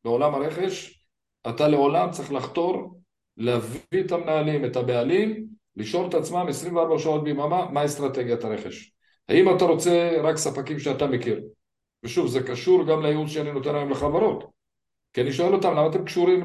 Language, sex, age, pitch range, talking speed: Hebrew, male, 50-69, 135-180 Hz, 155 wpm